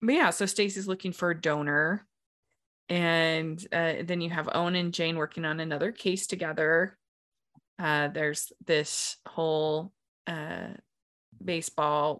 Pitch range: 160-210 Hz